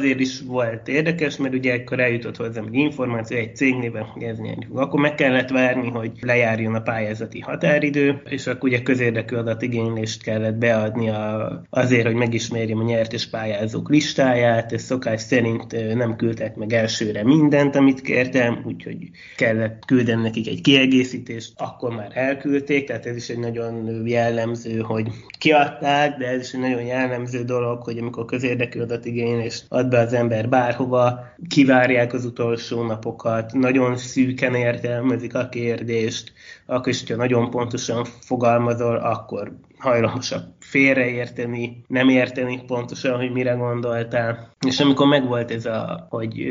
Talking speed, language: 145 wpm, Hungarian